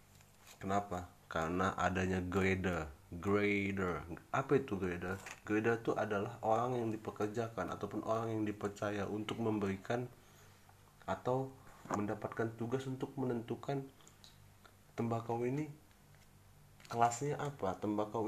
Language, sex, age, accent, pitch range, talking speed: Indonesian, male, 30-49, native, 100-115 Hz, 100 wpm